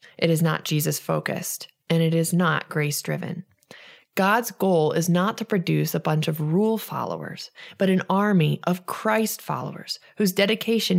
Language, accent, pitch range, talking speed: English, American, 160-200 Hz, 145 wpm